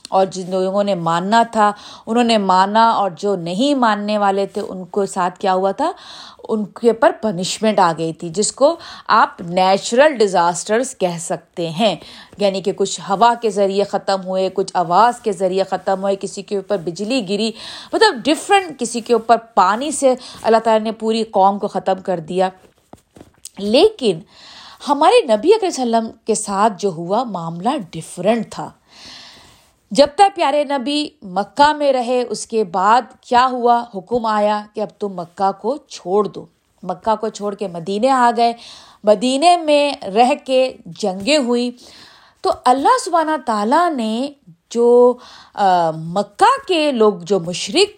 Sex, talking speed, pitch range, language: female, 165 wpm, 195-265 Hz, Urdu